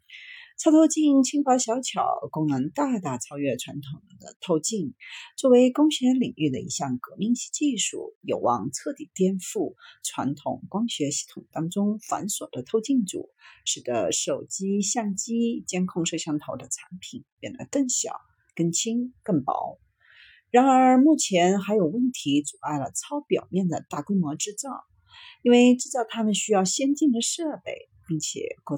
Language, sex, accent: Chinese, female, native